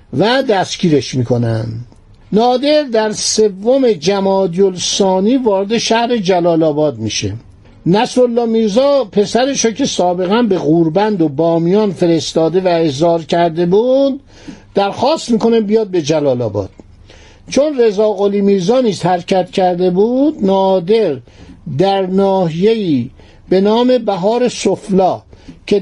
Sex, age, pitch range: male, 60-79, 165-220 Hz